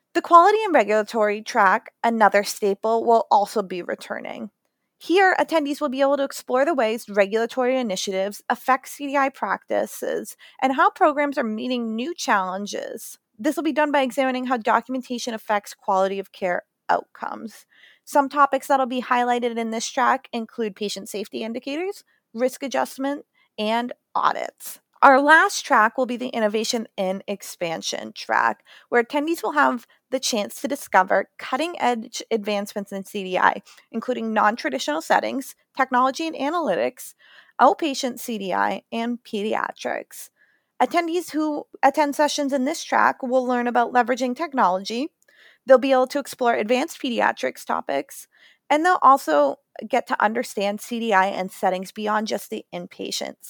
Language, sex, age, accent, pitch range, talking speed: English, female, 30-49, American, 215-285 Hz, 140 wpm